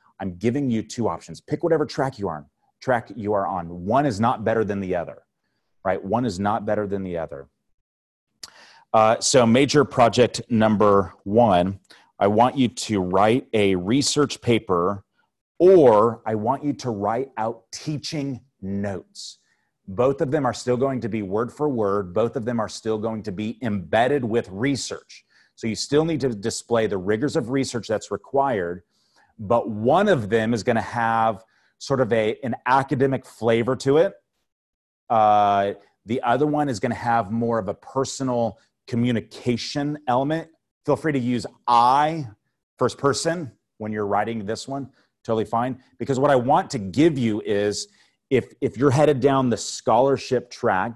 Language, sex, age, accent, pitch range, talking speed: English, male, 30-49, American, 105-135 Hz, 165 wpm